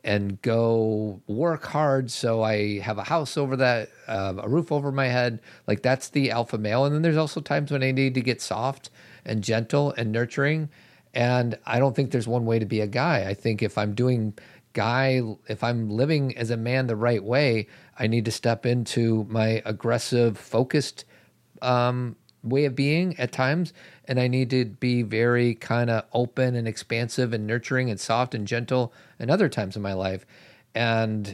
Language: English